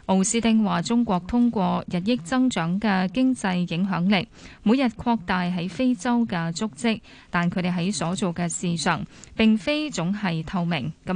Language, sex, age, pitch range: Chinese, female, 20-39, 175-235 Hz